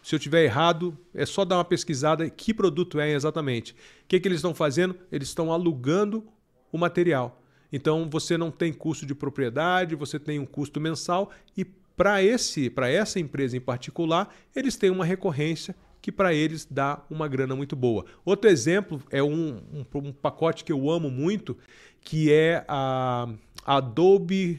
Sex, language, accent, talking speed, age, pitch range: male, Portuguese, Brazilian, 175 wpm, 40-59, 135-175 Hz